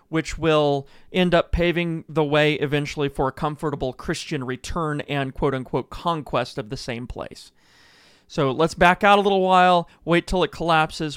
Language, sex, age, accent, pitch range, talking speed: English, male, 30-49, American, 140-165 Hz, 165 wpm